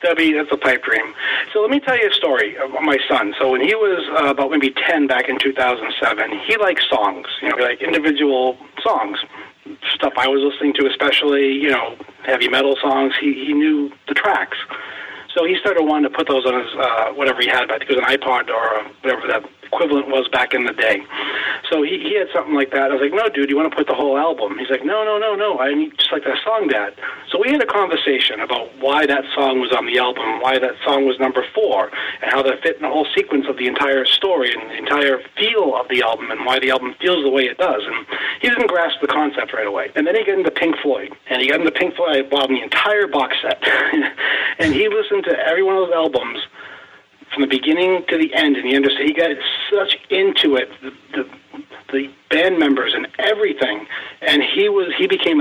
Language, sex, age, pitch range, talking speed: English, male, 40-59, 130-155 Hz, 240 wpm